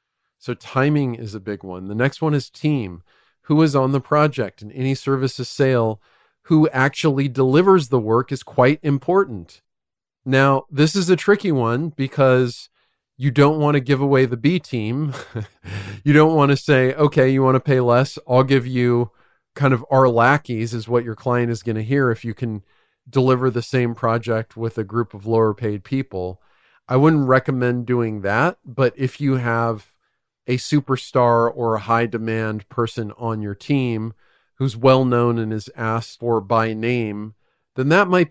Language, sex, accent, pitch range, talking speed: English, male, American, 110-140 Hz, 180 wpm